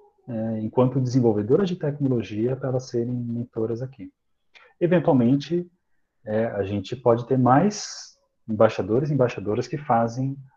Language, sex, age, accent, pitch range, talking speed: Portuguese, male, 30-49, Brazilian, 100-125 Hz, 125 wpm